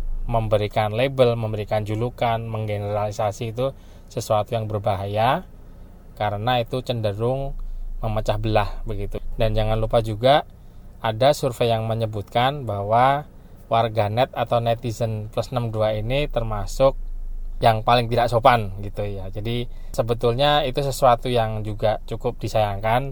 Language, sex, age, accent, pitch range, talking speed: Indonesian, male, 20-39, native, 105-125 Hz, 120 wpm